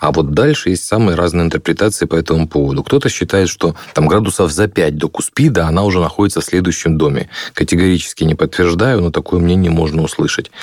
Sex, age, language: male, 30-49, Russian